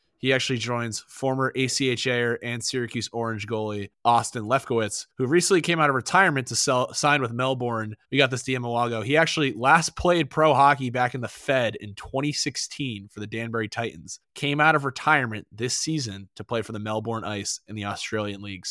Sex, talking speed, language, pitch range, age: male, 195 wpm, English, 110-135 Hz, 20-39